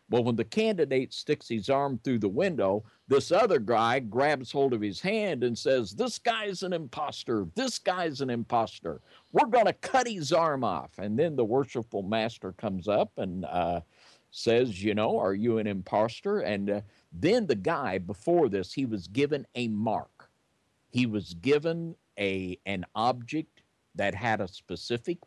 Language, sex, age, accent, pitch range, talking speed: English, male, 50-69, American, 105-160 Hz, 170 wpm